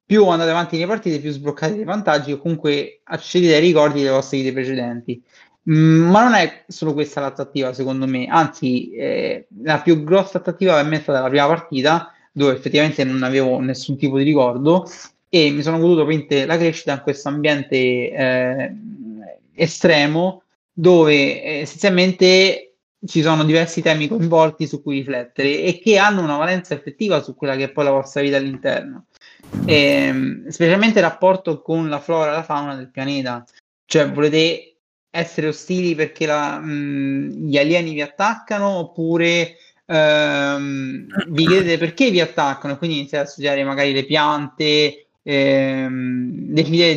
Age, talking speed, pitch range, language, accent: 30-49, 155 wpm, 140-170 Hz, Italian, native